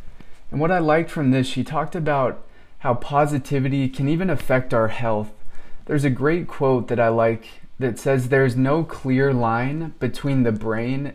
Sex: male